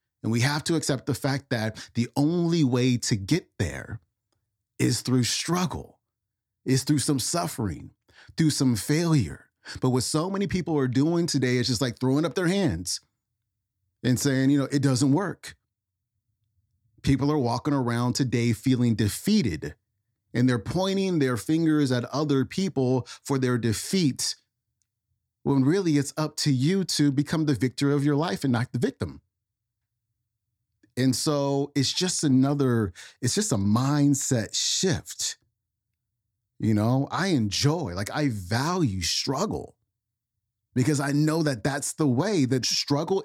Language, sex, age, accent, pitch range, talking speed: English, male, 30-49, American, 110-145 Hz, 150 wpm